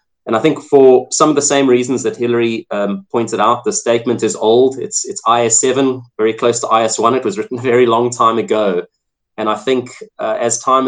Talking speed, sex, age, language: 215 wpm, male, 20-39, English